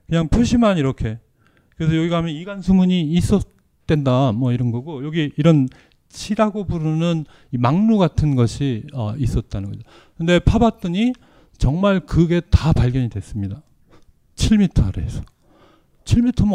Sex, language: male, Korean